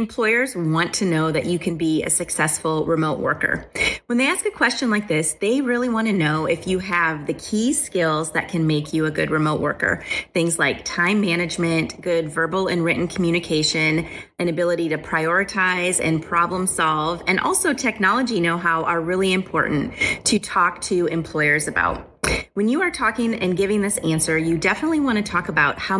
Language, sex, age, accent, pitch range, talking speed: English, female, 30-49, American, 165-200 Hz, 185 wpm